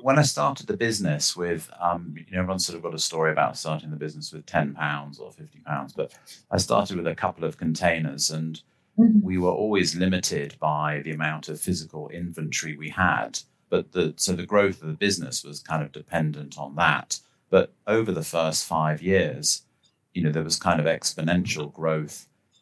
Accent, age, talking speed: British, 40-59, 190 wpm